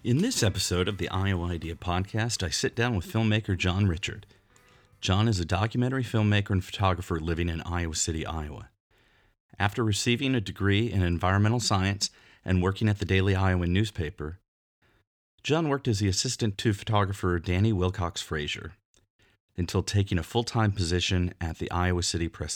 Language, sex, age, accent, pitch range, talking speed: English, male, 40-59, American, 90-105 Hz, 160 wpm